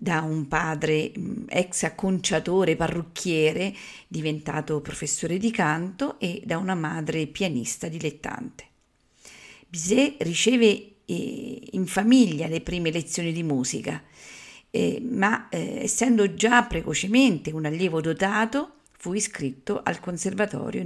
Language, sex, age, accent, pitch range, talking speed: Italian, female, 50-69, native, 165-215 Hz, 105 wpm